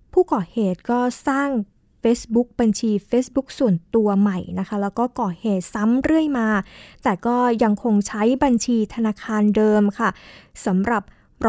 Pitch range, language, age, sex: 205-255 Hz, Thai, 20-39, female